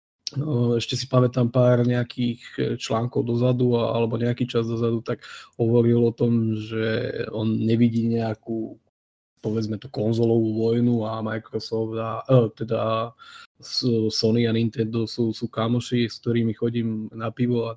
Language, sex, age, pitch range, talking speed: Slovak, male, 20-39, 115-130 Hz, 135 wpm